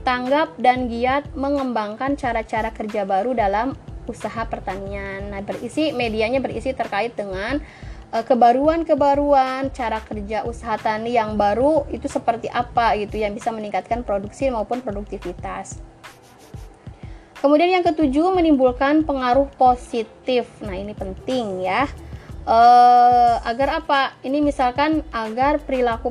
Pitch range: 220-275 Hz